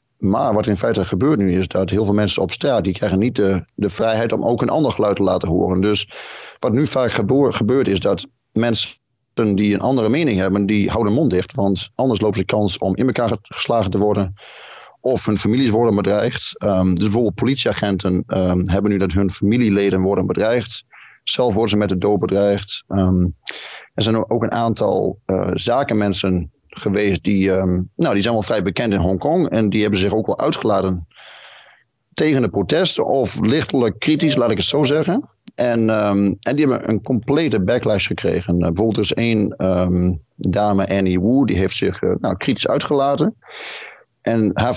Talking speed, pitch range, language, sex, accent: 195 wpm, 95-110 Hz, Dutch, male, Dutch